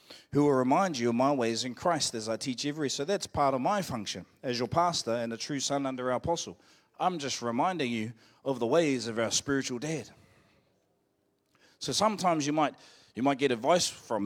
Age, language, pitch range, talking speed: 30-49, English, 115-155 Hz, 205 wpm